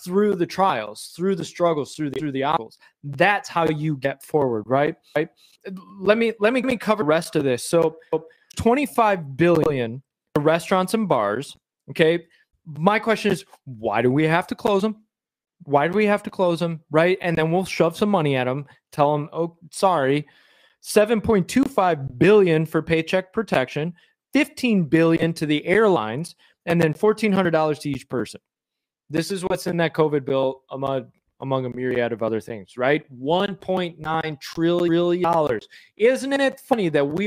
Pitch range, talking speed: 145-205 Hz, 180 wpm